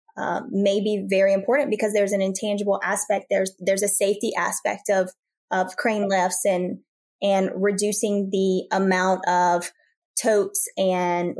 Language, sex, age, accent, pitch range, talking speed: English, female, 20-39, American, 195-240 Hz, 140 wpm